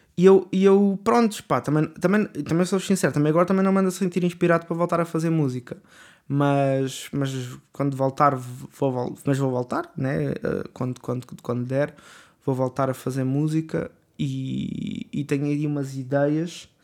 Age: 20-39